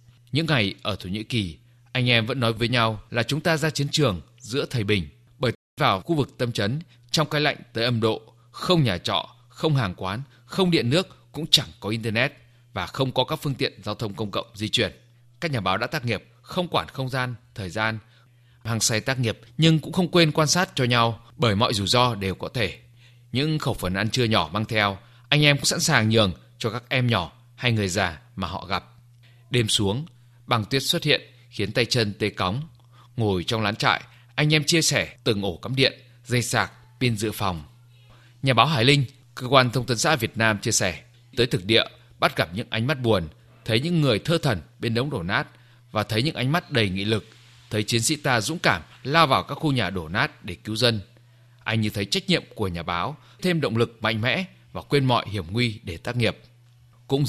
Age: 20-39